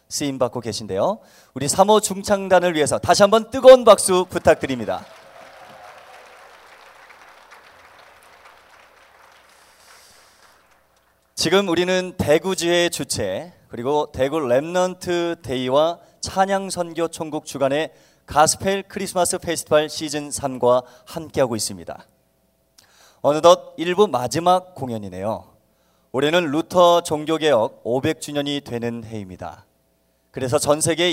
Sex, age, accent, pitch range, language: male, 30-49, native, 125-180 Hz, Korean